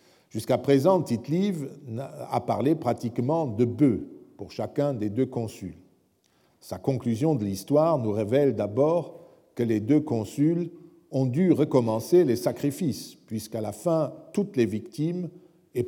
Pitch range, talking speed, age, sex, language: 110-160 Hz, 135 wpm, 50-69, male, French